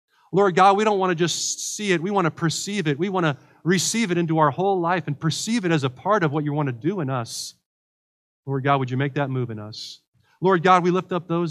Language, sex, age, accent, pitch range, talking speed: English, male, 40-59, American, 145-185 Hz, 270 wpm